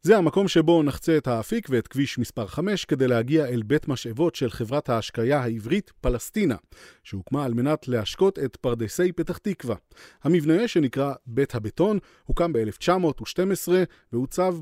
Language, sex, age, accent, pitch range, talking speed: Hebrew, male, 30-49, native, 120-170 Hz, 145 wpm